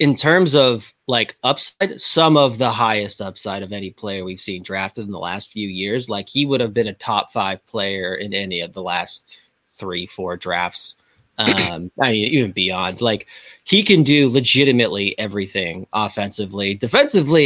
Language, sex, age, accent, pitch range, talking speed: English, male, 20-39, American, 105-140 Hz, 170 wpm